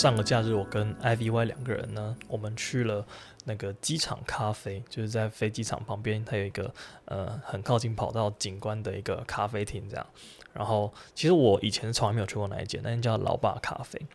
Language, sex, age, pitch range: Chinese, male, 20-39, 105-120 Hz